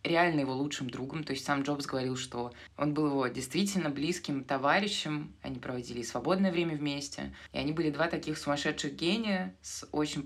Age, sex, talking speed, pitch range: 20-39, female, 175 wpm, 140-180 Hz